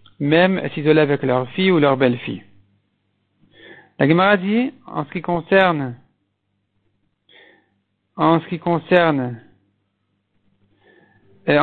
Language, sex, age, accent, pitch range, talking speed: French, male, 50-69, French, 145-185 Hz, 105 wpm